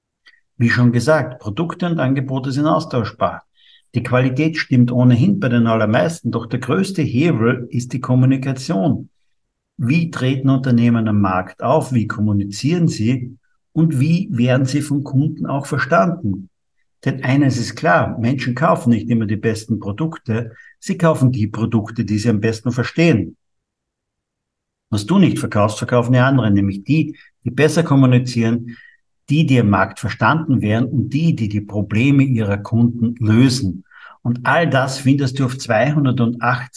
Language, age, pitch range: German, 50-69, 115-135 Hz